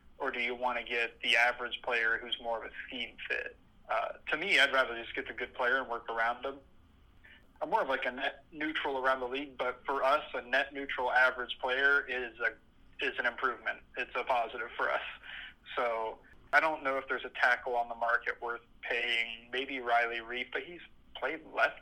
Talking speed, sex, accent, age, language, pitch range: 210 wpm, male, American, 20-39, English, 120-135 Hz